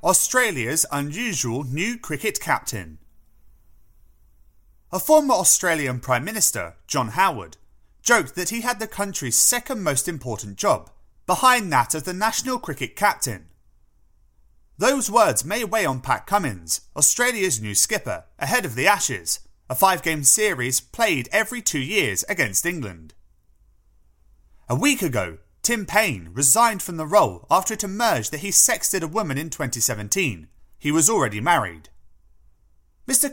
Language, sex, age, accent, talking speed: English, male, 30-49, British, 135 wpm